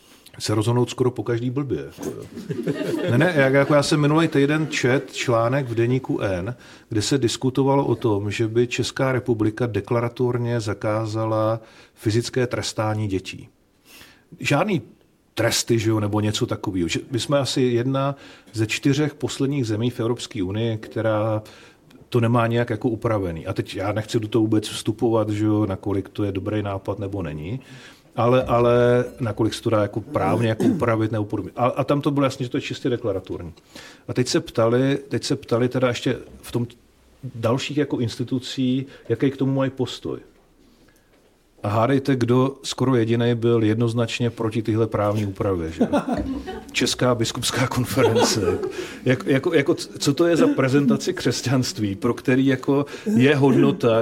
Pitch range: 115-140 Hz